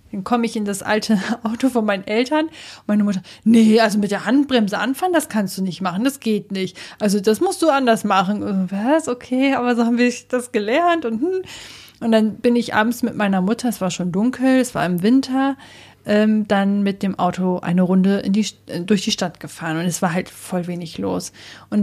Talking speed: 215 wpm